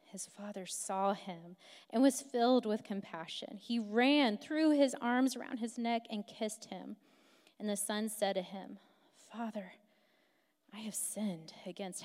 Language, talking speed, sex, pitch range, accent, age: English, 155 wpm, female, 195-295 Hz, American, 20-39